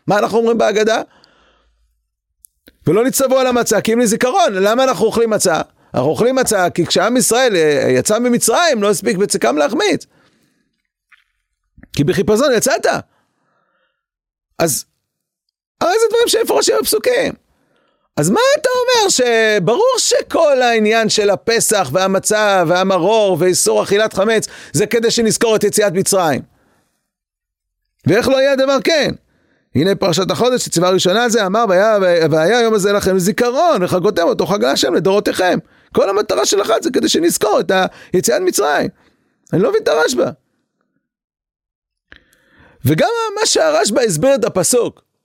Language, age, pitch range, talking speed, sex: Hebrew, 40-59, 180-255 Hz, 130 wpm, male